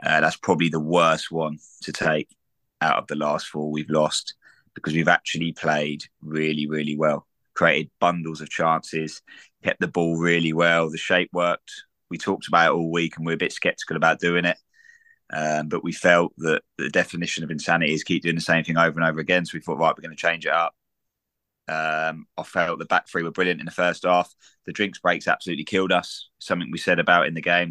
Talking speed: 220 wpm